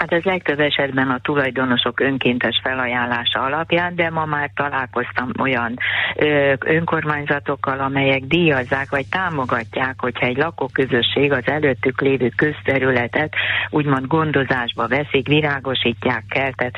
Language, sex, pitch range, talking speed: Hungarian, female, 120-145 Hz, 110 wpm